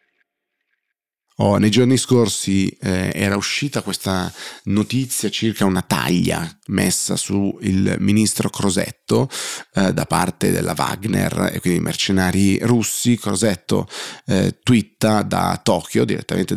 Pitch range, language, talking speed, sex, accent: 95-110 Hz, Italian, 120 wpm, male, native